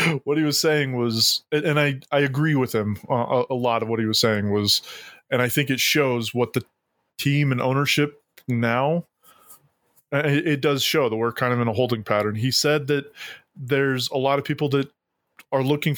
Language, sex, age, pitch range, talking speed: English, male, 20-39, 120-145 Hz, 205 wpm